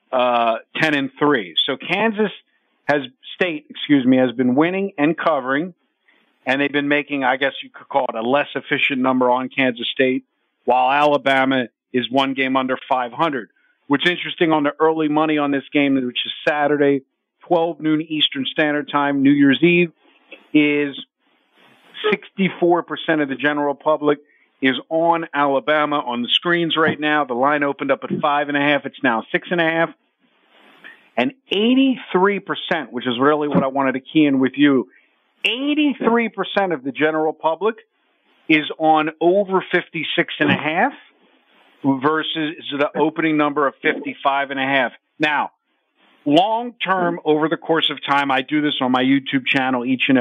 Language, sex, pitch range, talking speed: English, male, 135-165 Hz, 160 wpm